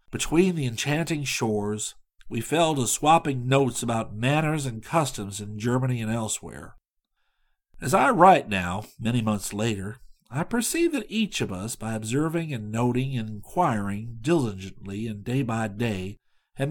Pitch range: 110-165 Hz